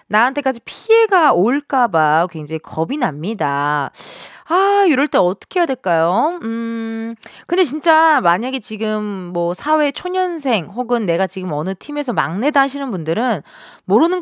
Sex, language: female, Korean